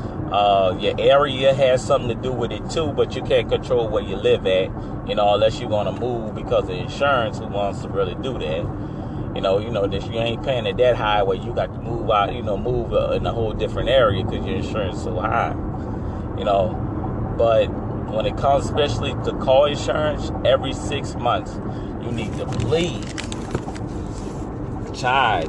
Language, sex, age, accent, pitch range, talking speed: English, male, 30-49, American, 105-125 Hz, 200 wpm